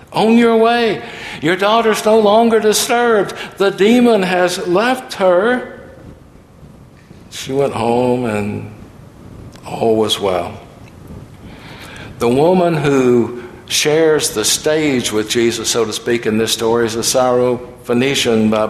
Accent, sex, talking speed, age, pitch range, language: American, male, 120 wpm, 60-79, 120-180 Hz, English